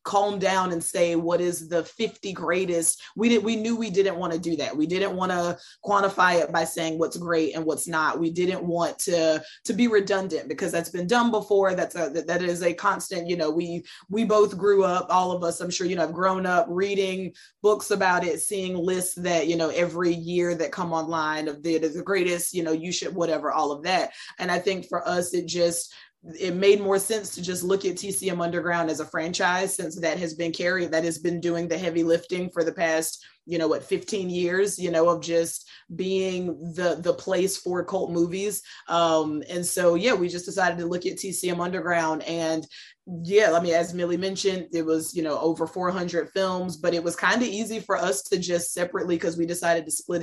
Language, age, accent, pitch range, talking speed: English, 20-39, American, 165-190 Hz, 220 wpm